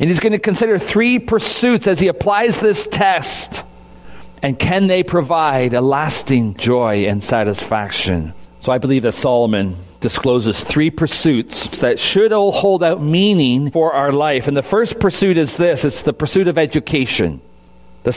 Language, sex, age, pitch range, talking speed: English, male, 40-59, 135-190 Hz, 165 wpm